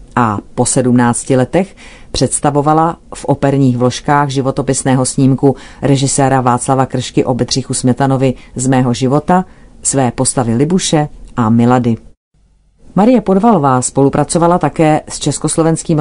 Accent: native